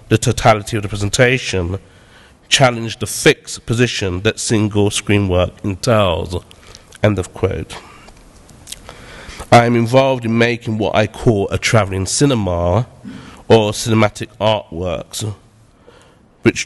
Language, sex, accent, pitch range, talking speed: English, male, British, 100-120 Hz, 105 wpm